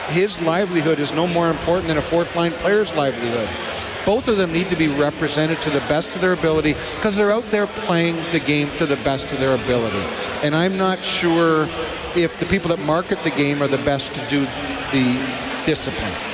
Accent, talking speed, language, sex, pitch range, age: American, 200 wpm, English, male, 165-215 Hz, 60-79